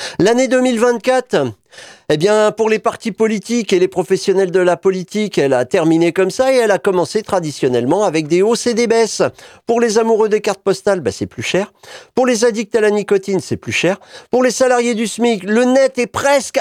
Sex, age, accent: male, 40-59, French